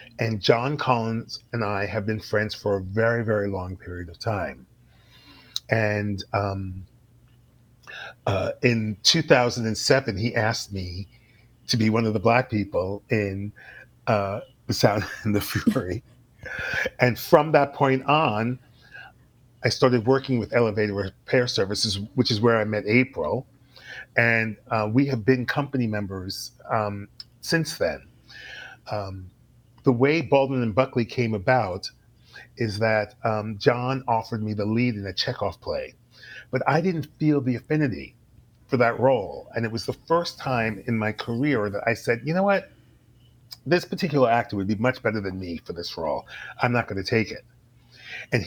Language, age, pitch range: English, 40-59, 110-130 Hz